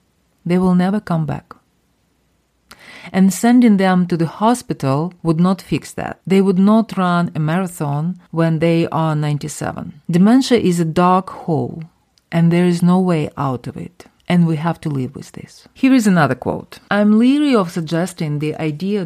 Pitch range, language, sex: 155-195 Hz, English, female